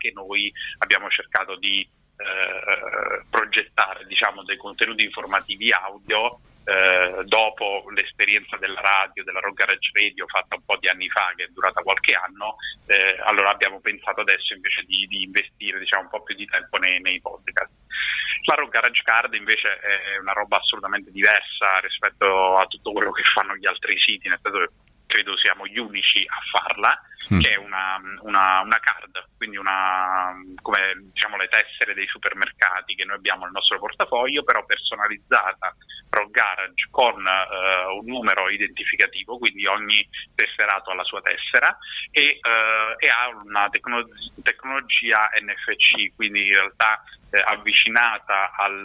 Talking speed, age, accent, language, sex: 155 wpm, 30-49, native, Italian, male